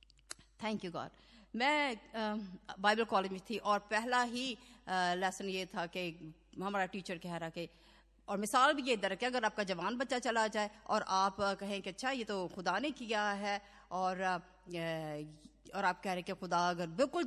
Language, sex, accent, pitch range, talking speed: Hindi, female, native, 185-250 Hz, 185 wpm